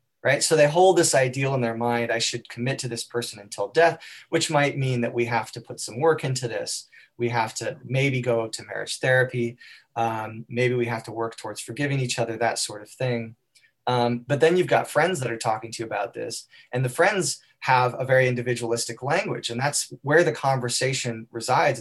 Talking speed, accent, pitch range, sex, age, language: 215 wpm, American, 120-140 Hz, male, 20-39, English